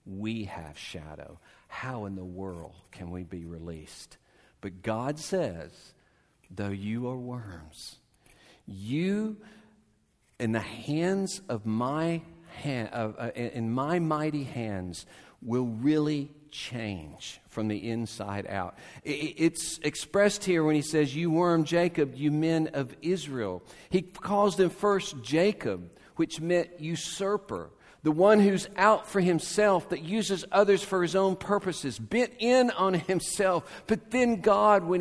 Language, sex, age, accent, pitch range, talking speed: English, male, 50-69, American, 110-185 Hz, 135 wpm